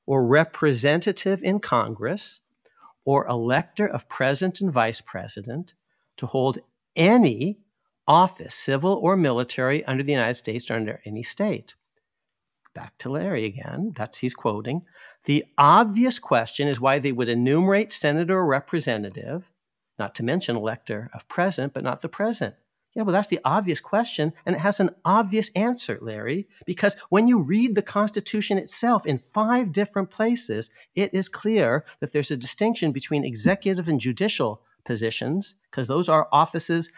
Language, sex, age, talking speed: English, male, 50-69, 155 wpm